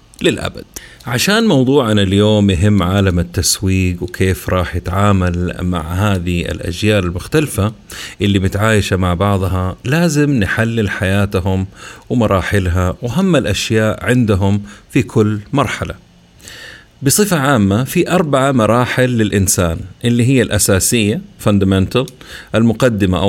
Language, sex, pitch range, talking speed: Arabic, male, 95-120 Hz, 100 wpm